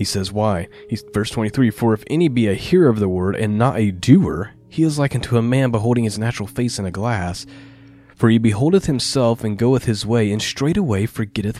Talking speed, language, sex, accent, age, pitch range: 220 wpm, English, male, American, 30-49, 95-130 Hz